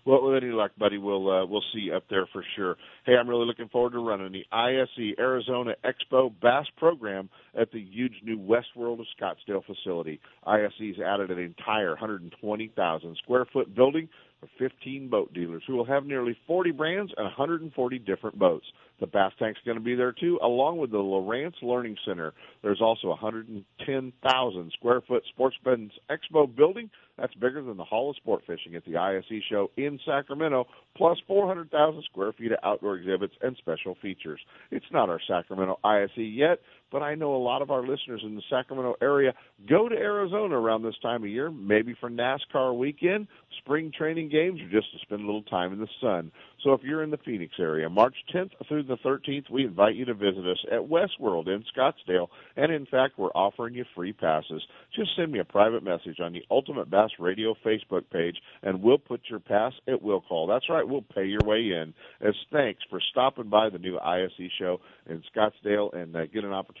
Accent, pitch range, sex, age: American, 100-130 Hz, male, 50-69